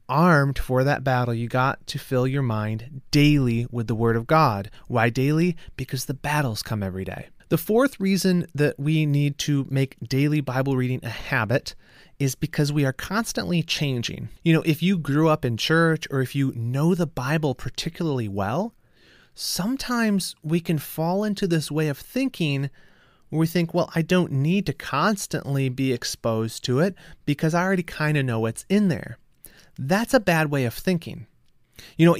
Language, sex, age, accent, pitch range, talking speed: English, male, 30-49, American, 125-170 Hz, 185 wpm